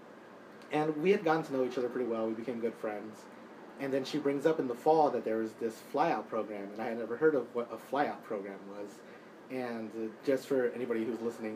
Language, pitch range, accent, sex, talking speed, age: English, 110-135 Hz, American, male, 235 wpm, 30-49